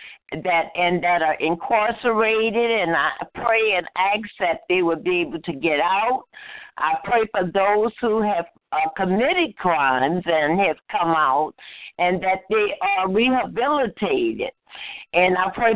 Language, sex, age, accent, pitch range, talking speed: English, female, 60-79, American, 175-230 Hz, 150 wpm